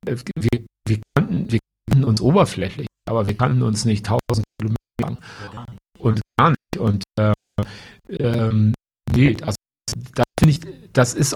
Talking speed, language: 145 wpm, German